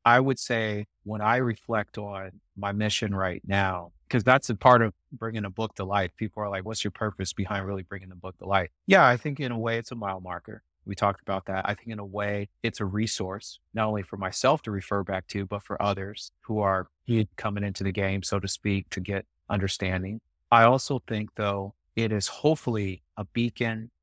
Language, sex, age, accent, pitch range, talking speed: English, male, 30-49, American, 100-115 Hz, 220 wpm